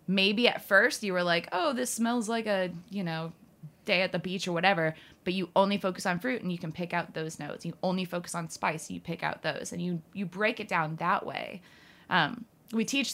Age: 20-39